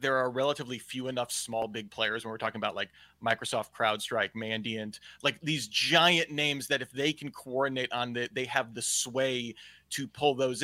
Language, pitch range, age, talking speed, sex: English, 120-150 Hz, 30-49, 190 wpm, male